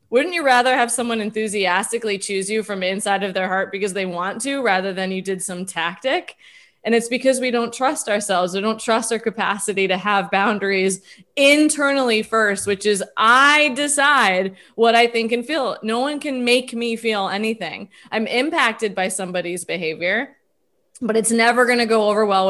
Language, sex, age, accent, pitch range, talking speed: English, female, 20-39, American, 195-250 Hz, 185 wpm